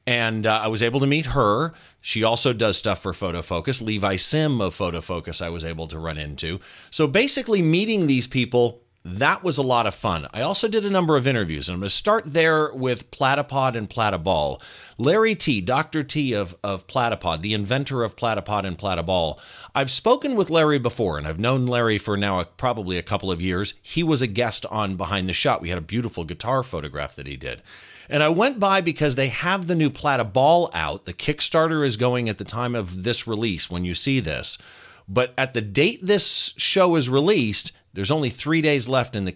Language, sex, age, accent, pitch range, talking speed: English, male, 40-59, American, 100-145 Hz, 215 wpm